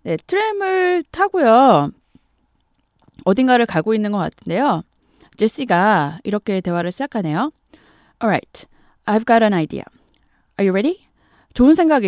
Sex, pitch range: female, 195-290 Hz